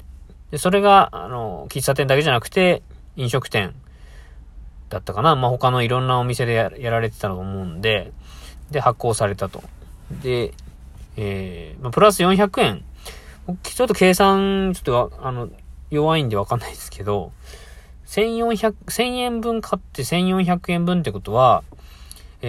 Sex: male